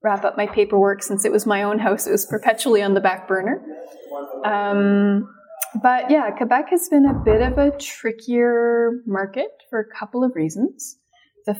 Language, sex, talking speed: English, female, 180 wpm